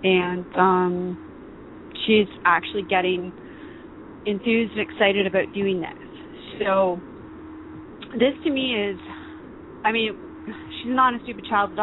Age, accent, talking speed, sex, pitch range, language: 30-49, American, 120 wpm, female, 195-275 Hz, English